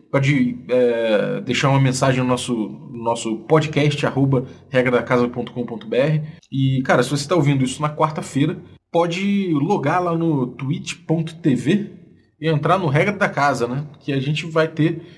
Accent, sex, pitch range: Brazilian, male, 120-160 Hz